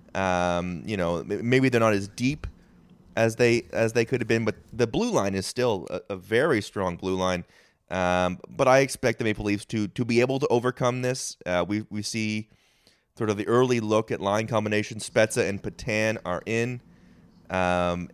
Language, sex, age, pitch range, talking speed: English, male, 30-49, 95-120 Hz, 195 wpm